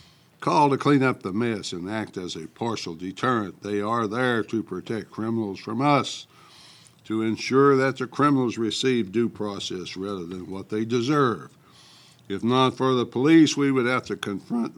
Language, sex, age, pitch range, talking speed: English, male, 60-79, 100-125 Hz, 175 wpm